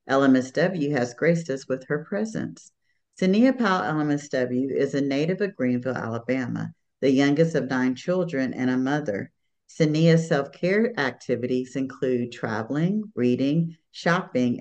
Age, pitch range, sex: 50-69, 125-165 Hz, female